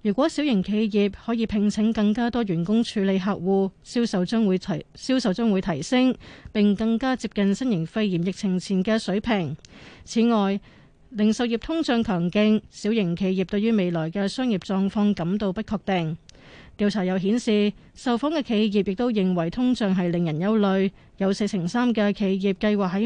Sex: female